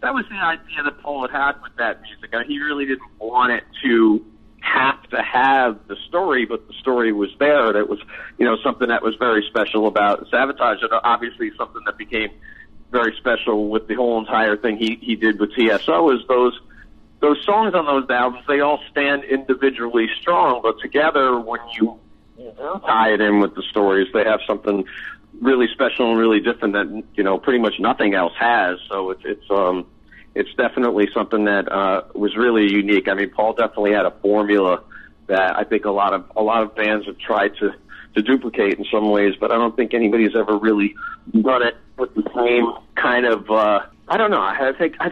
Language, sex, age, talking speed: English, male, 50-69, 205 wpm